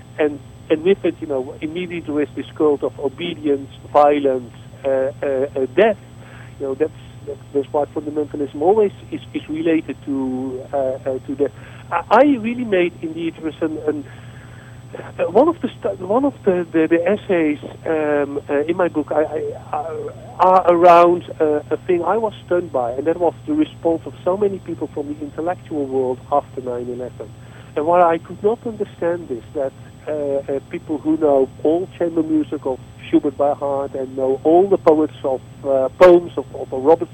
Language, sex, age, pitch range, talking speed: English, male, 50-69, 130-175 Hz, 185 wpm